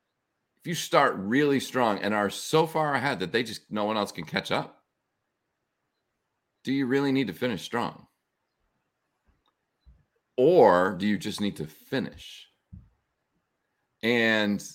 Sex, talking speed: male, 135 wpm